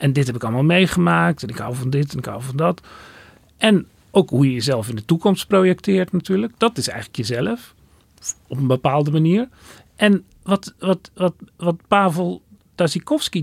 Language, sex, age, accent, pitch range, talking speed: Dutch, male, 40-59, Dutch, 125-185 Hz, 175 wpm